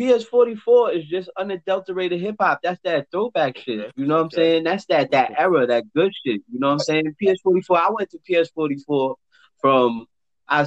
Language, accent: English, American